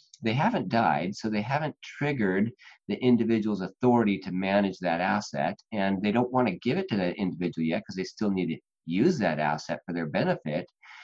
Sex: male